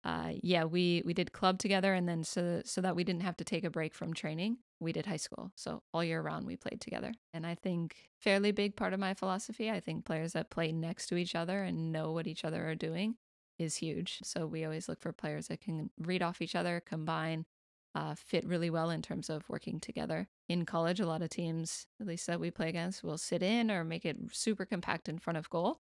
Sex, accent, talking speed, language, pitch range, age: female, American, 240 wpm, English, 165-195 Hz, 20-39